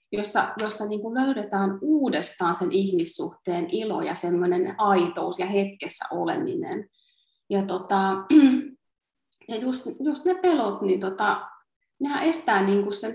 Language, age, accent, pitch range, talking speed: Finnish, 30-49, native, 190-290 Hz, 125 wpm